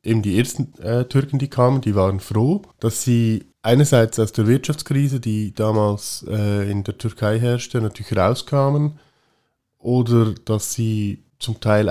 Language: German